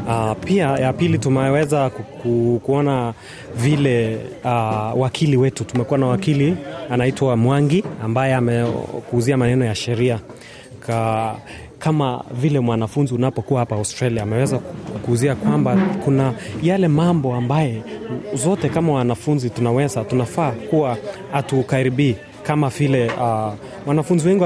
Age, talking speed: 30-49, 115 wpm